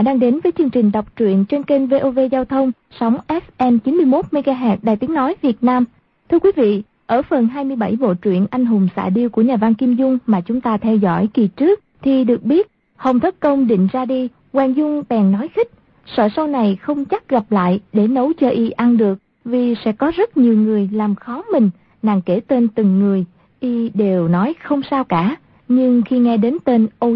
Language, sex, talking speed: Vietnamese, female, 215 wpm